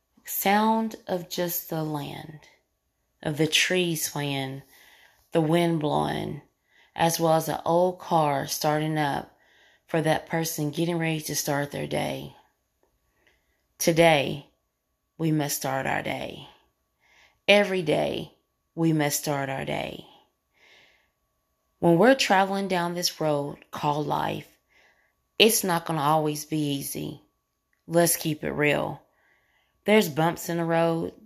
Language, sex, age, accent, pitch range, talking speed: English, female, 20-39, American, 150-175 Hz, 125 wpm